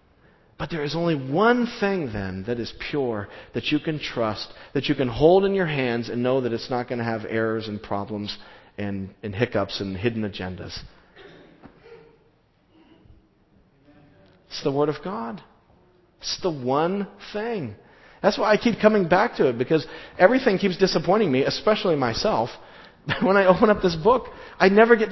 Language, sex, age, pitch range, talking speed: English, male, 40-59, 105-160 Hz, 170 wpm